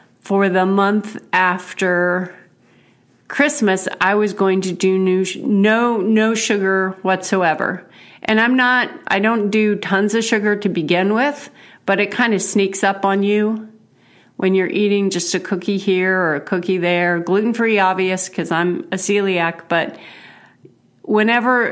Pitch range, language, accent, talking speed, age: 185-220 Hz, English, American, 150 wpm, 40-59